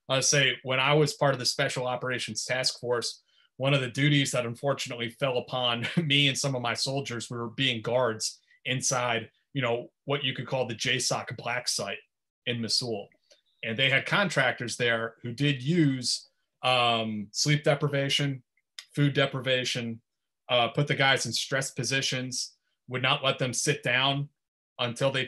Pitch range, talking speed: 120-145 Hz, 170 wpm